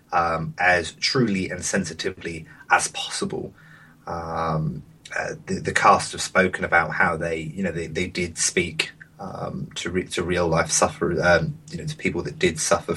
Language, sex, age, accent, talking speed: English, male, 30-49, British, 175 wpm